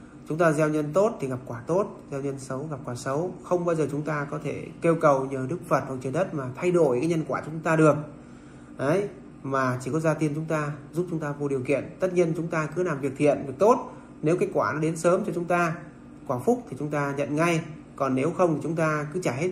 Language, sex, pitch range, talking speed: Vietnamese, male, 135-165 Hz, 270 wpm